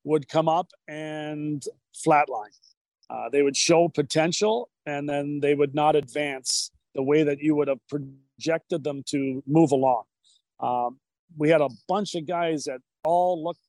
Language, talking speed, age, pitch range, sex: English, 160 wpm, 40-59, 140-165 Hz, male